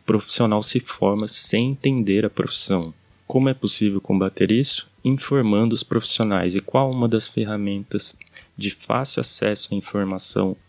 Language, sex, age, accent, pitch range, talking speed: Portuguese, male, 20-39, Brazilian, 95-120 Hz, 140 wpm